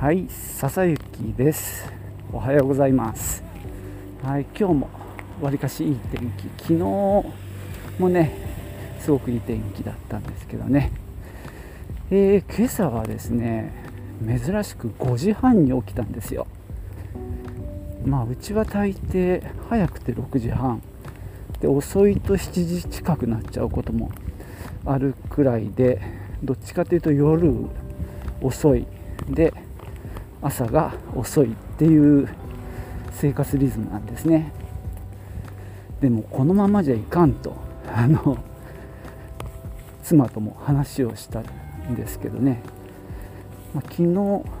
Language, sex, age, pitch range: Japanese, male, 40-59, 100-145 Hz